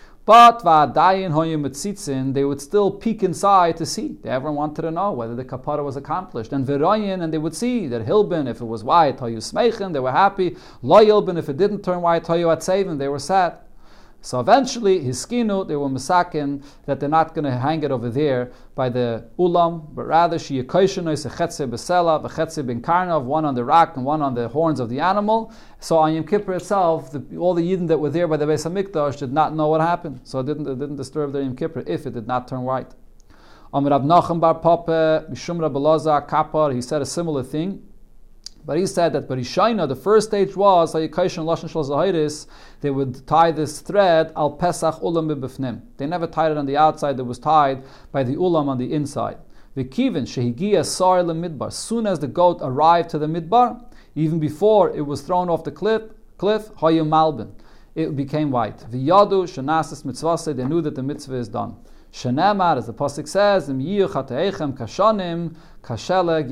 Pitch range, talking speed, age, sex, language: 140-175 Hz, 185 wpm, 40-59, male, English